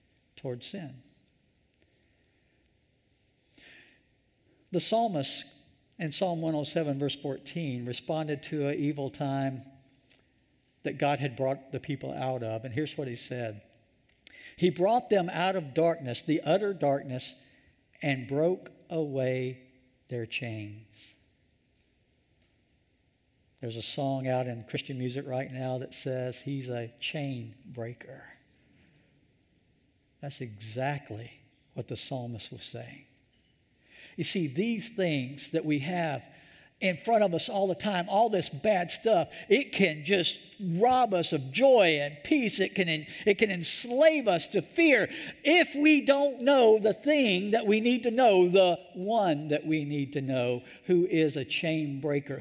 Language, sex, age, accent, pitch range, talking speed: English, male, 60-79, American, 130-180 Hz, 140 wpm